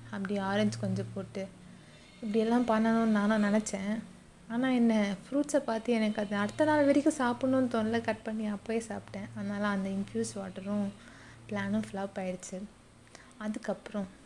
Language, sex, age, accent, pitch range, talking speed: Tamil, female, 20-39, native, 200-230 Hz, 130 wpm